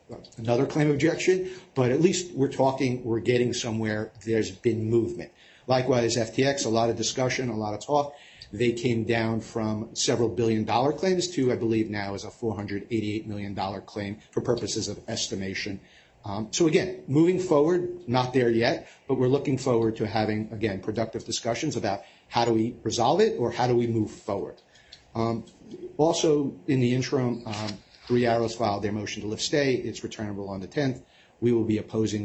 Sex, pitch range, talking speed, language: male, 110-135 Hz, 180 wpm, English